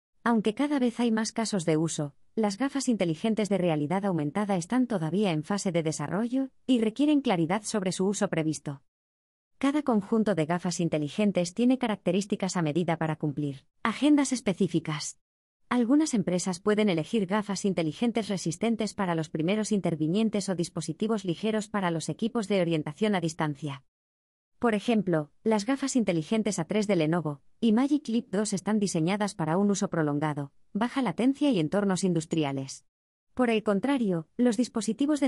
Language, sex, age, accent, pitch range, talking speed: Spanish, female, 20-39, Spanish, 160-220 Hz, 150 wpm